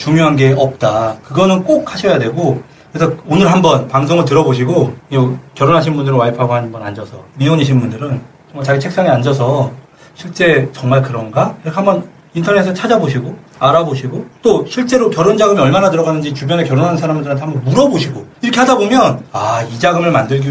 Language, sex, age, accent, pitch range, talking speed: English, male, 40-59, Korean, 130-175 Hz, 140 wpm